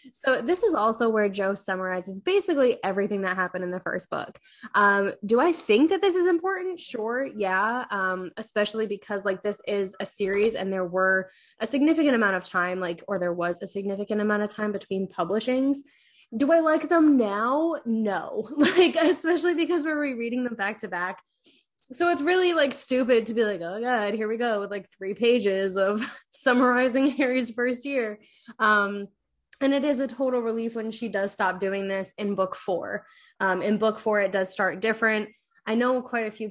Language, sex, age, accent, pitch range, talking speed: English, female, 10-29, American, 195-265 Hz, 190 wpm